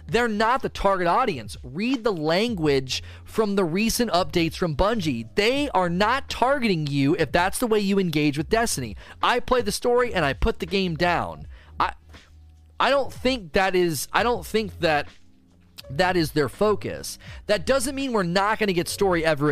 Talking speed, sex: 190 wpm, male